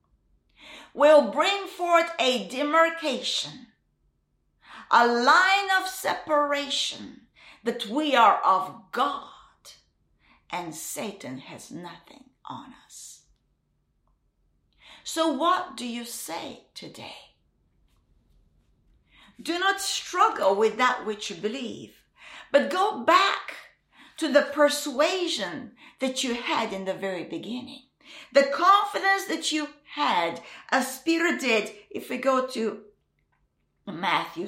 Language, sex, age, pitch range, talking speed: English, female, 50-69, 210-320 Hz, 105 wpm